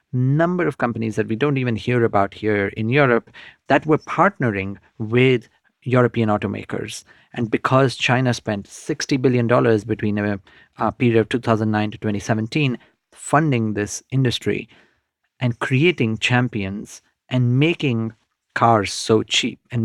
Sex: male